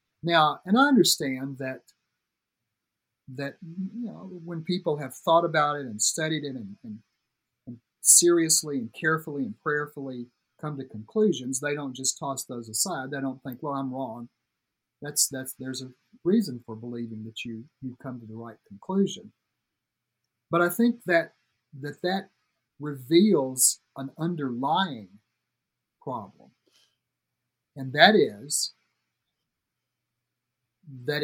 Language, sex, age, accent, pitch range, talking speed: English, male, 50-69, American, 125-160 Hz, 135 wpm